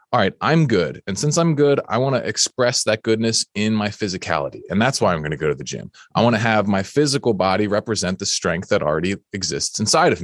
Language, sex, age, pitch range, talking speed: English, male, 20-39, 100-120 Hz, 245 wpm